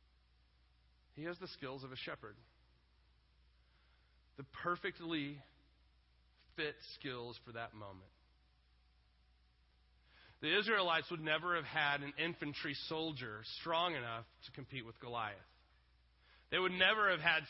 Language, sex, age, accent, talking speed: English, male, 30-49, American, 115 wpm